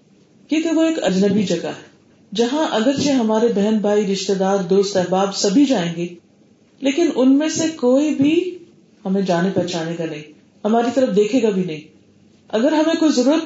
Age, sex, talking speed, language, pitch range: 40-59, female, 175 wpm, Urdu, 185-240 Hz